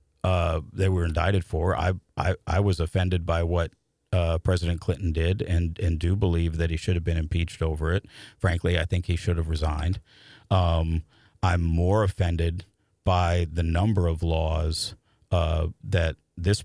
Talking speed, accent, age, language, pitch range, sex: 170 wpm, American, 50-69, English, 85-100 Hz, male